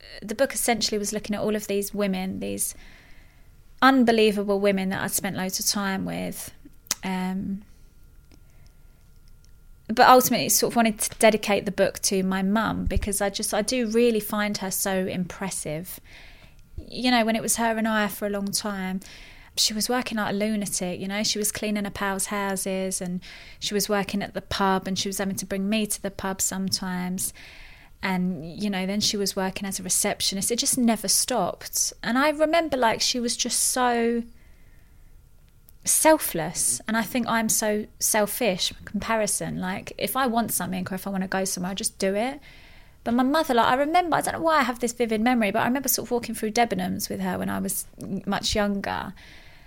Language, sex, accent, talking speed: English, female, British, 200 wpm